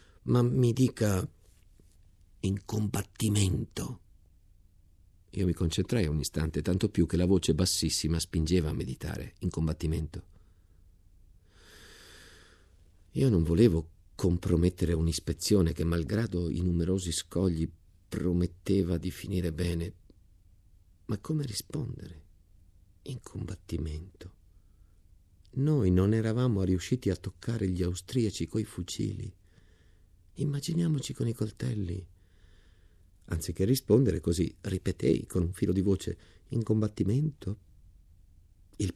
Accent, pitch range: native, 85-100 Hz